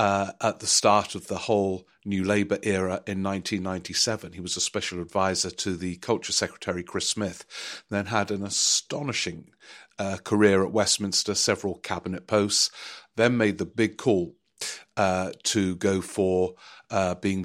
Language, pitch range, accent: English, 95-110 Hz, British